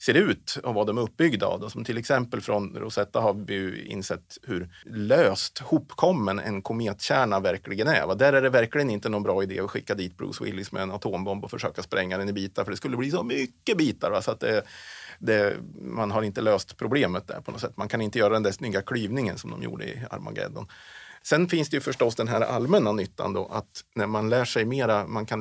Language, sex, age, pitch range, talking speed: Swedish, male, 30-49, 100-125 Hz, 230 wpm